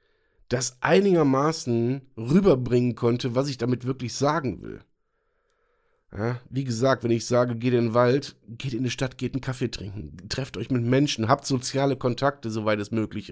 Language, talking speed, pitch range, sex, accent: German, 165 wpm, 125-170 Hz, male, German